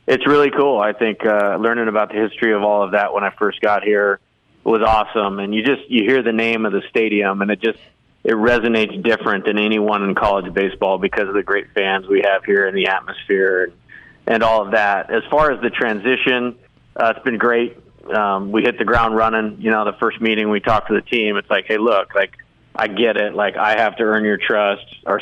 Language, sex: English, male